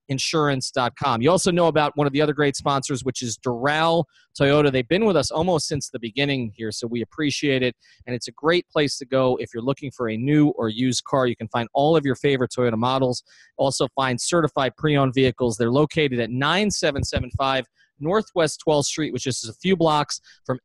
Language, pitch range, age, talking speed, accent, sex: English, 125-160 Hz, 30-49, 210 wpm, American, male